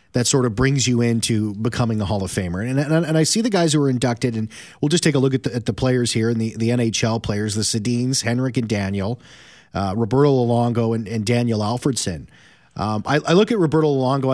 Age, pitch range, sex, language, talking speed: 30-49, 110-130 Hz, male, English, 240 wpm